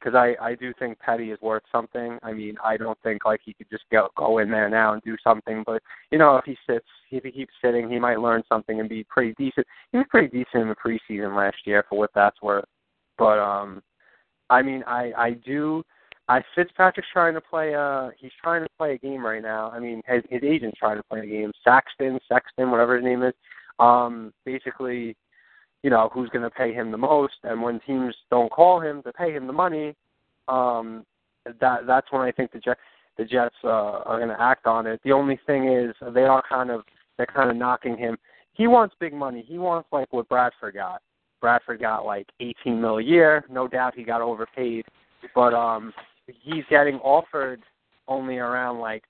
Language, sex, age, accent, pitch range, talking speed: English, male, 20-39, American, 110-135 Hz, 220 wpm